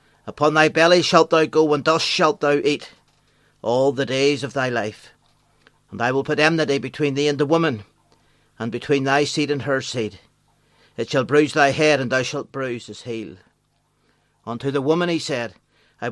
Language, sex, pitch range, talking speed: English, male, 130-160 Hz, 190 wpm